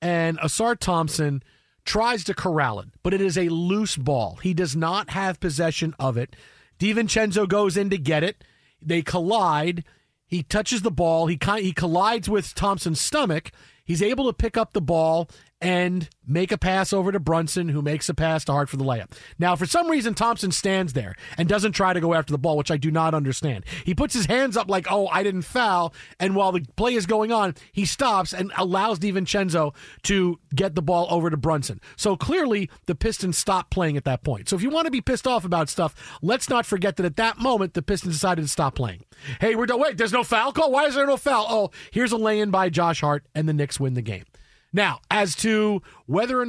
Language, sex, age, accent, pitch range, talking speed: English, male, 40-59, American, 150-205 Hz, 220 wpm